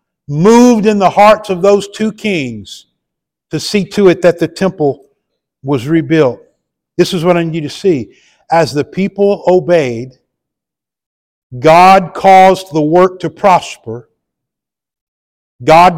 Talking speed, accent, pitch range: 130 wpm, American, 150-180 Hz